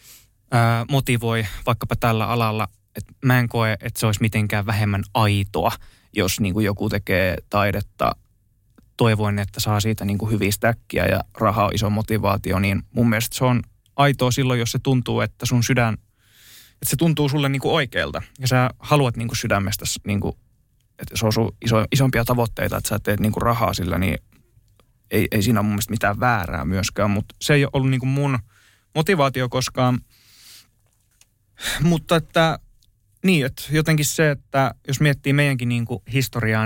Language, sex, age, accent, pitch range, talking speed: Finnish, male, 20-39, native, 105-125 Hz, 170 wpm